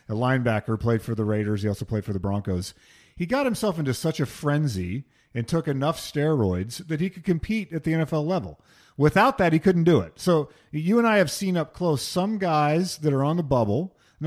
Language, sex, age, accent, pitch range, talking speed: English, male, 40-59, American, 115-165 Hz, 225 wpm